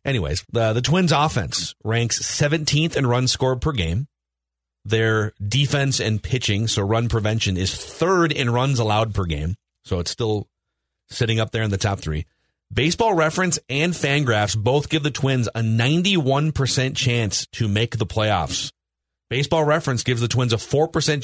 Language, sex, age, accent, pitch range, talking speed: English, male, 40-59, American, 105-150 Hz, 165 wpm